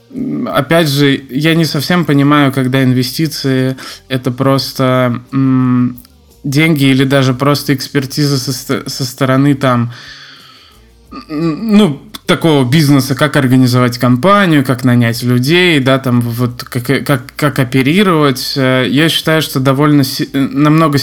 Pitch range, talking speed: 125-150 Hz, 120 wpm